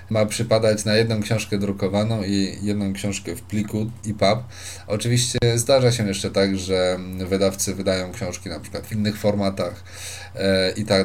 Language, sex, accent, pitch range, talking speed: Polish, male, native, 100-125 Hz, 150 wpm